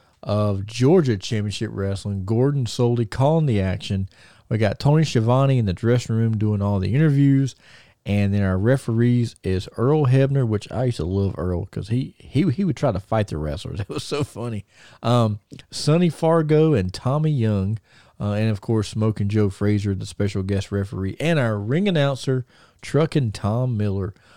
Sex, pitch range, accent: male, 105-140 Hz, American